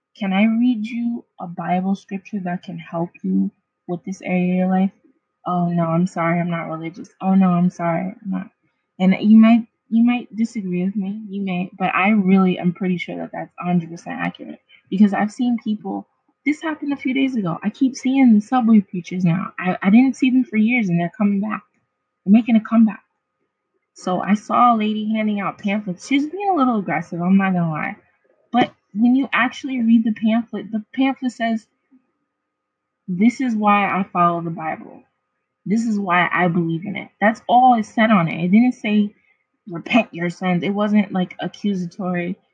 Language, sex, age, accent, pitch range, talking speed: English, female, 20-39, American, 185-235 Hz, 195 wpm